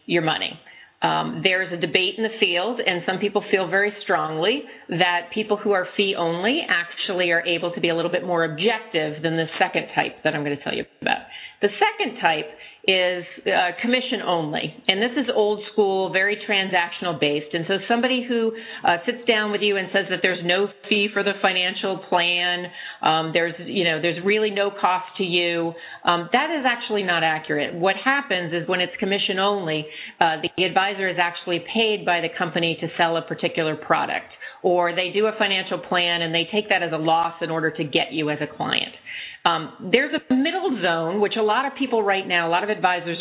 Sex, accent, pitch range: female, American, 170-215 Hz